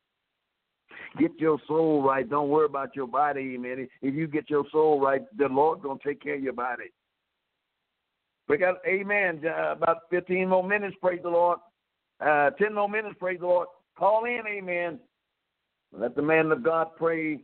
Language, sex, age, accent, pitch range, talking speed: English, male, 60-79, American, 135-180 Hz, 175 wpm